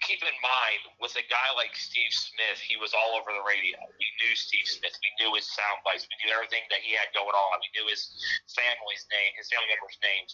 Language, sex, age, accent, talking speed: English, male, 30-49, American, 240 wpm